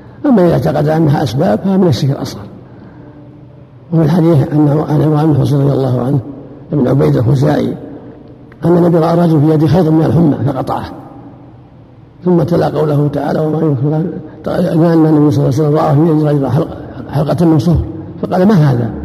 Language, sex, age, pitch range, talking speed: Arabic, male, 60-79, 140-160 Hz, 160 wpm